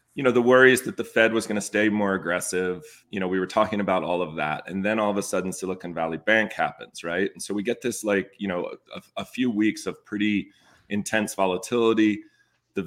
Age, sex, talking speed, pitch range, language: 30-49, male, 230 wpm, 95-110 Hz, English